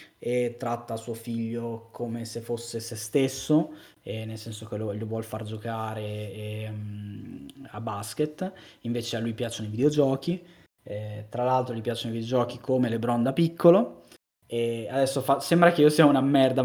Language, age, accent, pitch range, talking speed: Italian, 20-39, native, 115-145 Hz, 175 wpm